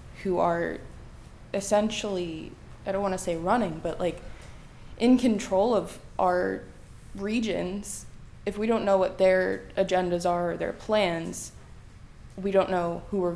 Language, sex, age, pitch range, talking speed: English, female, 20-39, 175-205 Hz, 145 wpm